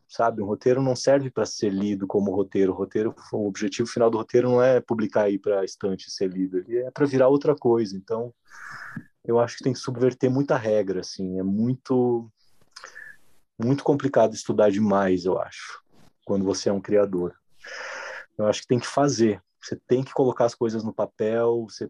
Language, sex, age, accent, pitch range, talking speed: Portuguese, male, 20-39, Brazilian, 105-125 Hz, 190 wpm